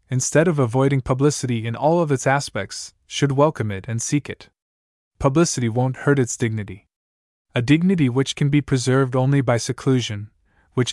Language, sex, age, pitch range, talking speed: English, male, 20-39, 110-140 Hz, 165 wpm